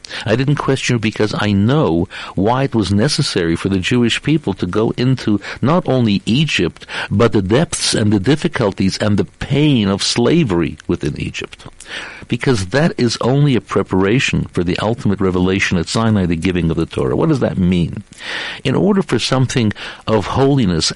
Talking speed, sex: 170 wpm, male